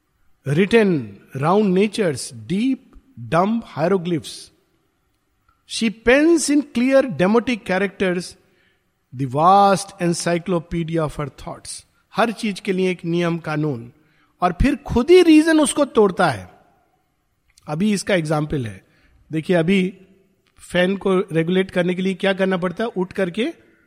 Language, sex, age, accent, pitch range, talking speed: Hindi, male, 50-69, native, 160-215 Hz, 130 wpm